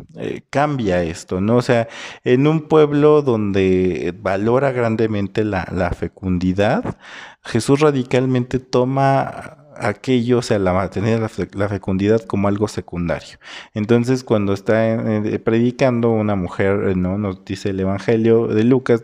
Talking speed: 130 wpm